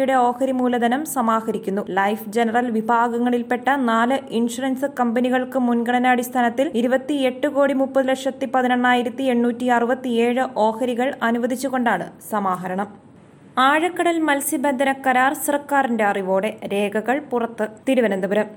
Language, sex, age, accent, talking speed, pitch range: Malayalam, female, 20-39, native, 90 wpm, 225-265 Hz